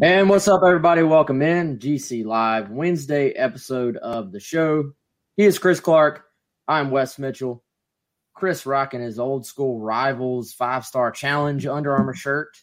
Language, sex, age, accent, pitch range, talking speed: English, male, 20-39, American, 120-150 Hz, 145 wpm